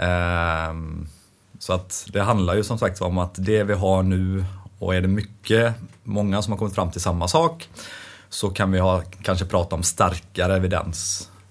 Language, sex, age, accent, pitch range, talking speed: English, male, 30-49, Swedish, 90-105 Hz, 175 wpm